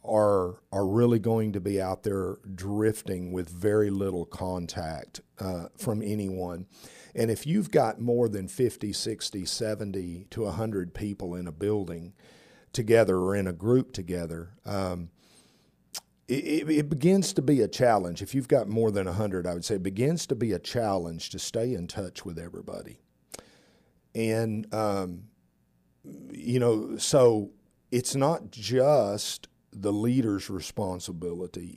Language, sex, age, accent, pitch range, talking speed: English, male, 50-69, American, 95-115 Hz, 145 wpm